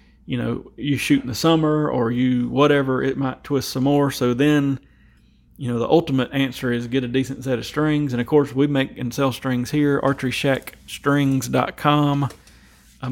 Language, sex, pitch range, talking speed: English, male, 120-140 Hz, 190 wpm